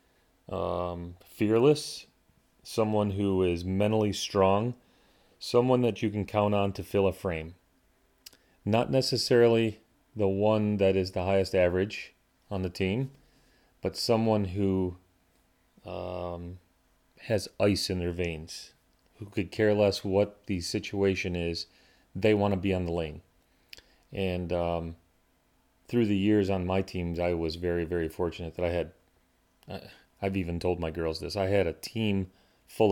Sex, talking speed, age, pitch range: male, 150 wpm, 30-49, 90-105 Hz